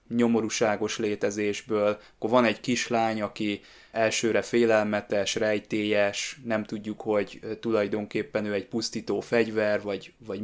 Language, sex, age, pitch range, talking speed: Hungarian, male, 20-39, 105-120 Hz, 115 wpm